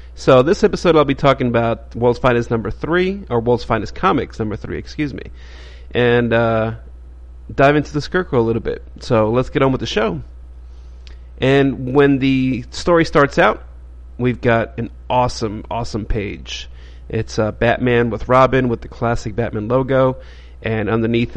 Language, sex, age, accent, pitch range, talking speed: English, male, 40-59, American, 105-130 Hz, 165 wpm